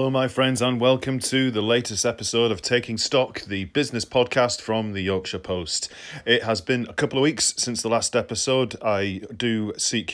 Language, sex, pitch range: English, male, 100-120 Hz